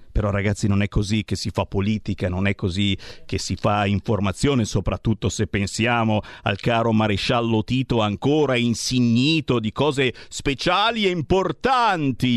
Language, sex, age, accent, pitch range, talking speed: Italian, male, 50-69, native, 100-150 Hz, 145 wpm